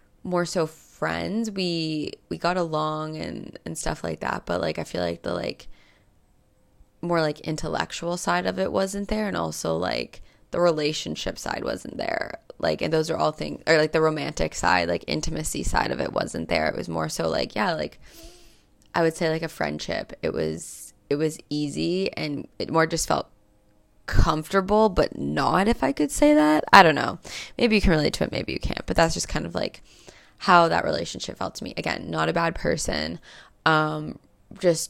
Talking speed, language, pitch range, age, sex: 200 wpm, English, 140-170 Hz, 20-39, female